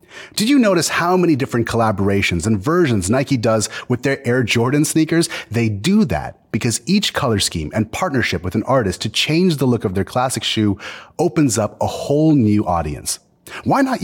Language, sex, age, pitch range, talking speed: English, male, 30-49, 105-155 Hz, 190 wpm